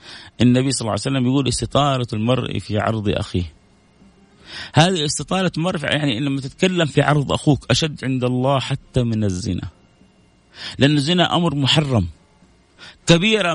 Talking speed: 135 wpm